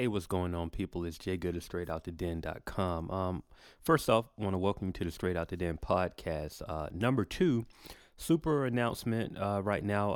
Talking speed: 215 wpm